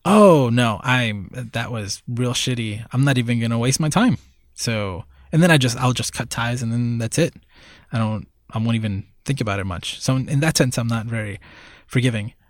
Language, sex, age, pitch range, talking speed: English, male, 20-39, 115-150 Hz, 210 wpm